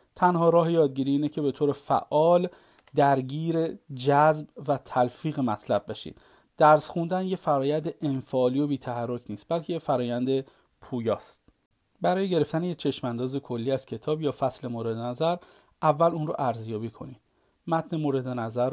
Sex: male